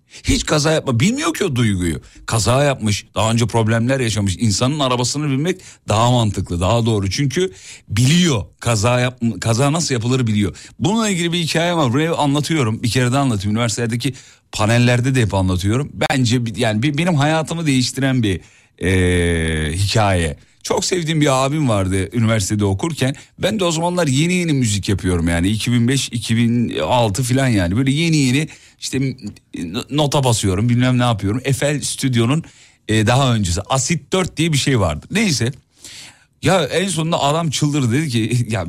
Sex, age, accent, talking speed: male, 40-59, native, 155 wpm